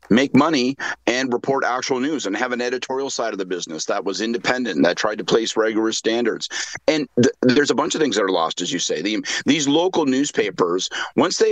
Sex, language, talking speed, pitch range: male, English, 220 wpm, 115-160 Hz